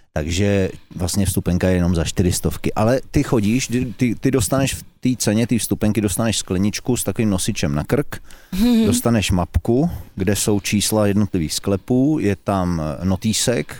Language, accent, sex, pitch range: Czech, native, male, 90-120 Hz